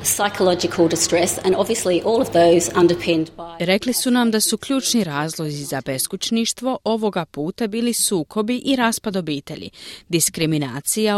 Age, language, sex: 30-49, Croatian, female